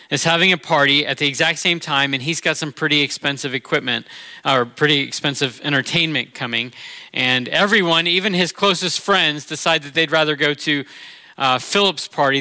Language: English